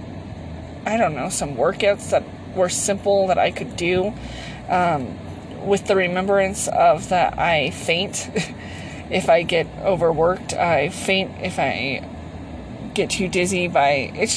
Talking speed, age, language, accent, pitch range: 140 wpm, 20-39, English, American, 165-220 Hz